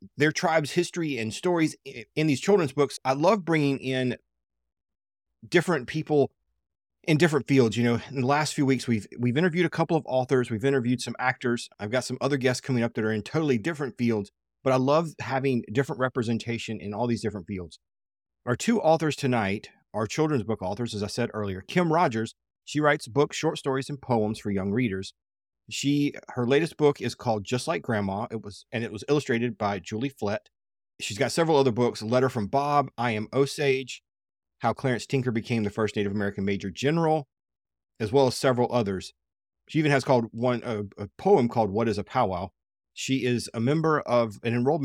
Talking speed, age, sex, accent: 200 wpm, 30-49, male, American